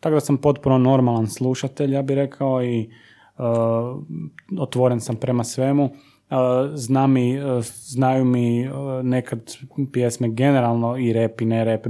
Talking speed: 120 wpm